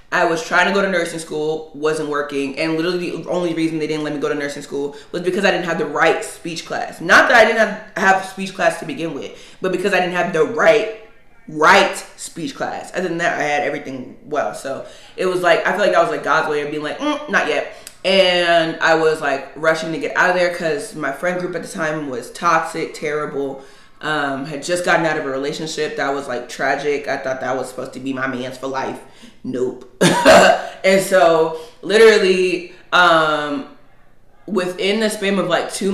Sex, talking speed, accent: female, 220 wpm, American